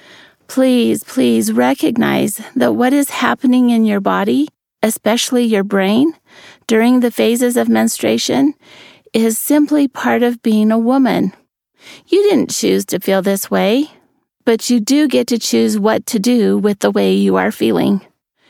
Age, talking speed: 30-49, 150 wpm